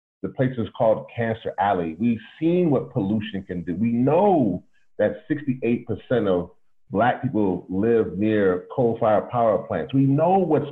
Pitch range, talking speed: 110-160 Hz, 155 wpm